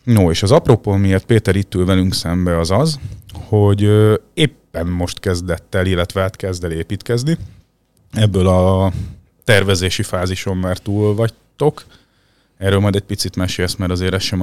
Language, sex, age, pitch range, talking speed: Hungarian, male, 30-49, 90-110 Hz, 155 wpm